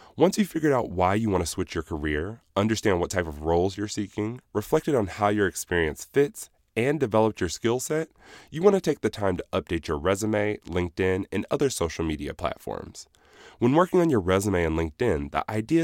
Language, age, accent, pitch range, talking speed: English, 20-39, American, 90-135 Hz, 205 wpm